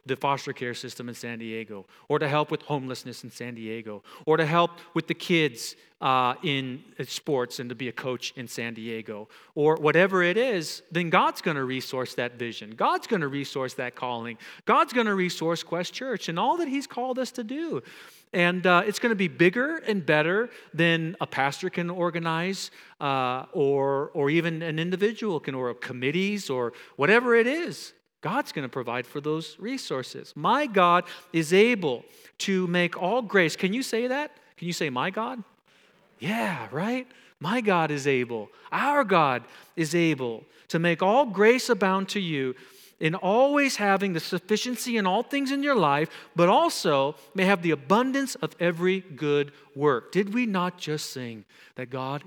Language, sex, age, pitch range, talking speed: English, male, 40-59, 135-200 Hz, 185 wpm